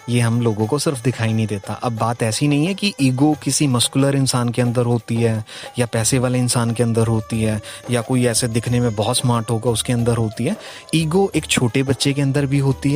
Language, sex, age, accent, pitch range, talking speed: Hindi, male, 30-49, native, 115-145 Hz, 230 wpm